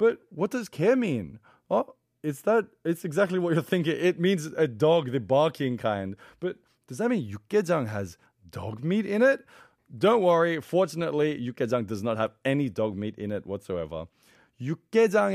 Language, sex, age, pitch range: Korean, male, 30-49, 130-195 Hz